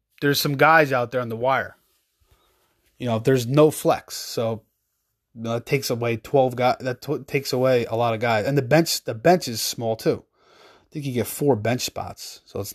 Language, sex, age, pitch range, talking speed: English, male, 20-39, 120-155 Hz, 215 wpm